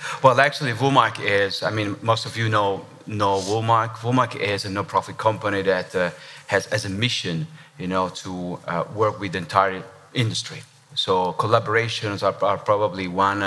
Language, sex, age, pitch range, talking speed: English, male, 30-49, 95-115 Hz, 165 wpm